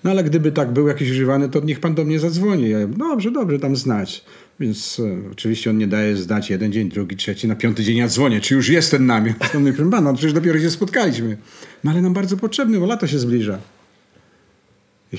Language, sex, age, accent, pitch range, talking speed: Polish, male, 50-69, native, 105-165 Hz, 225 wpm